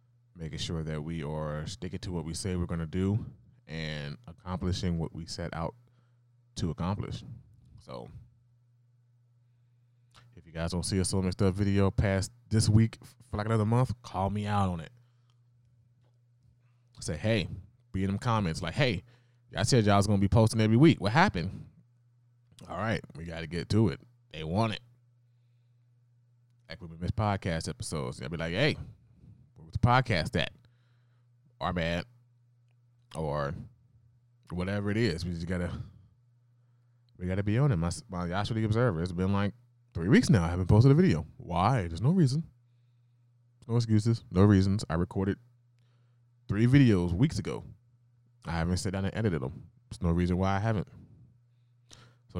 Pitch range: 90-120 Hz